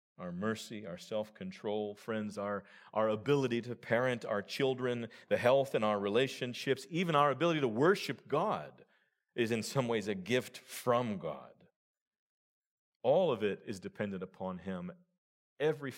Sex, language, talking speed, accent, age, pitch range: male, English, 145 wpm, American, 40-59, 110-170 Hz